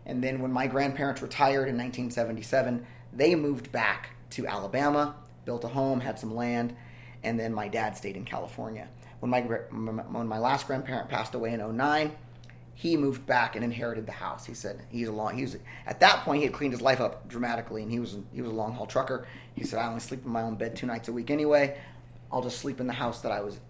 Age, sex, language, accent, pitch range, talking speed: 30-49, male, English, American, 115-135 Hz, 235 wpm